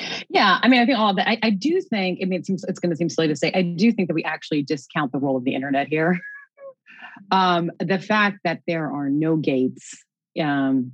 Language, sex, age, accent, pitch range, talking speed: English, female, 30-49, American, 140-175 Hz, 245 wpm